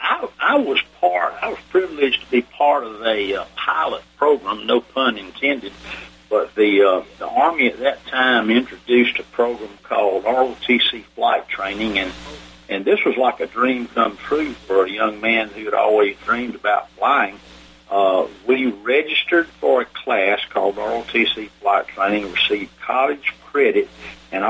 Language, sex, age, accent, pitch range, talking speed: English, male, 50-69, American, 95-130 Hz, 160 wpm